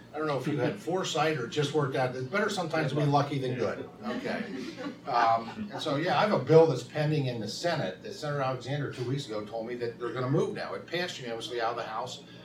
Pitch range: 115-150 Hz